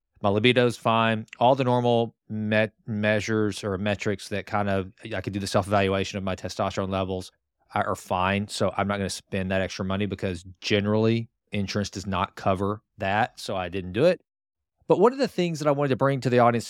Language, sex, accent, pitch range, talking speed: English, male, American, 100-120 Hz, 210 wpm